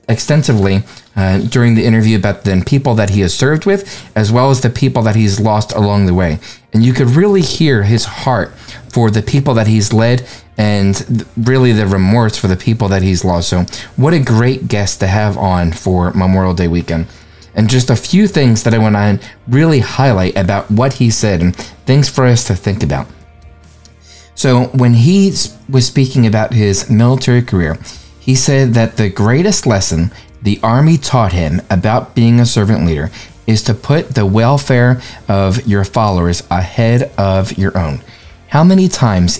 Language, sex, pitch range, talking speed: English, male, 95-130 Hz, 185 wpm